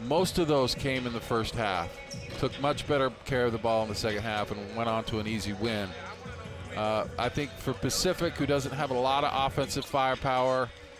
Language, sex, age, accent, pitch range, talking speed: English, male, 40-59, American, 110-130 Hz, 215 wpm